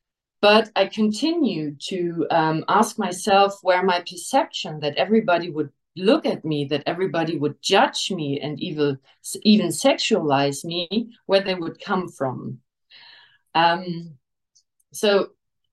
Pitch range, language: 165-210 Hz, English